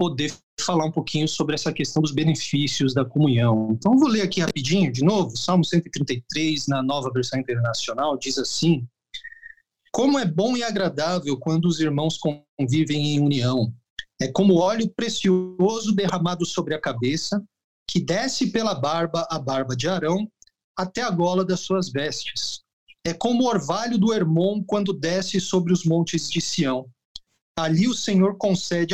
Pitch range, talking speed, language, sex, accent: 135-190 Hz, 160 wpm, Portuguese, male, Brazilian